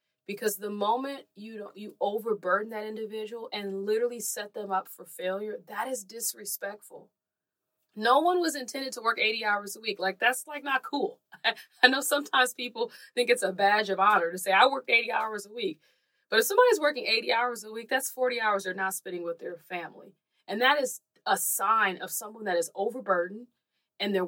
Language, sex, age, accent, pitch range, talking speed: English, female, 20-39, American, 185-250 Hz, 205 wpm